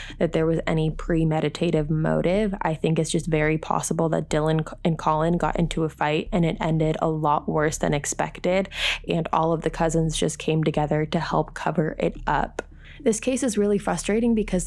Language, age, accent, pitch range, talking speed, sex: English, 20-39, American, 165-195 Hz, 190 wpm, female